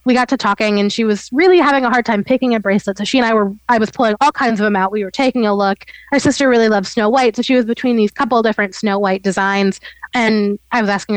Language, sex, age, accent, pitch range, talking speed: English, female, 20-39, American, 200-235 Hz, 290 wpm